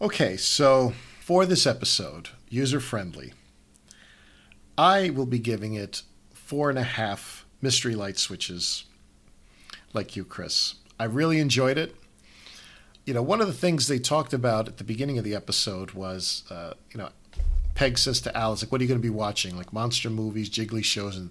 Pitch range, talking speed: 95-125 Hz, 170 wpm